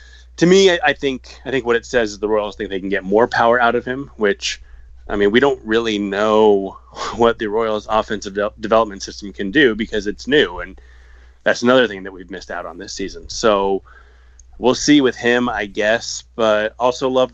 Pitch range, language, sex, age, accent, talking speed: 95-120 Hz, English, male, 20-39, American, 210 wpm